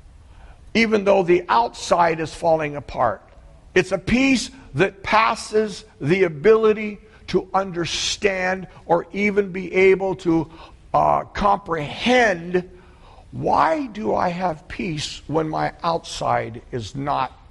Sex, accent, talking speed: male, American, 115 wpm